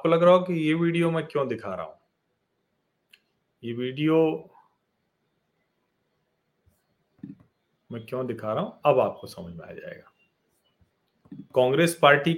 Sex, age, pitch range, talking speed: male, 40-59, 110-150 Hz, 125 wpm